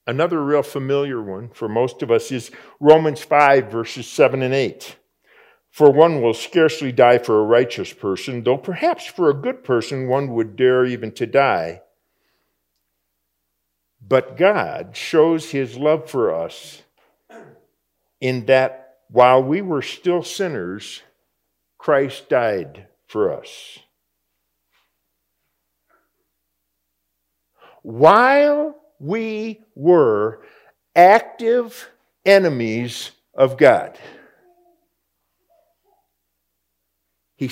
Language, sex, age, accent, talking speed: English, male, 50-69, American, 100 wpm